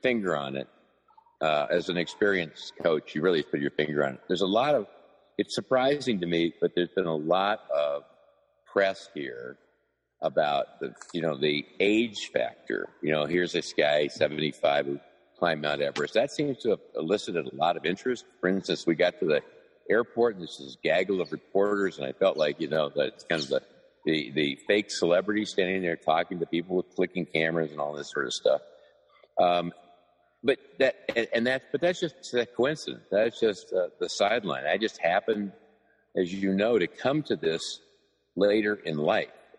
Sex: male